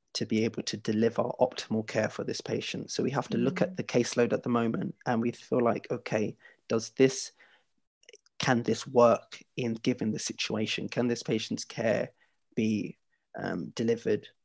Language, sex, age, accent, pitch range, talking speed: English, male, 30-49, British, 115-130 Hz, 175 wpm